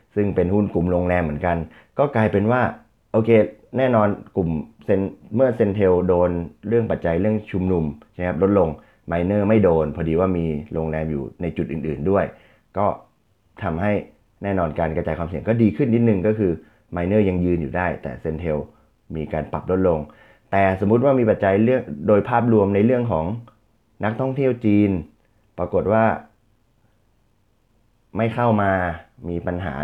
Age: 30-49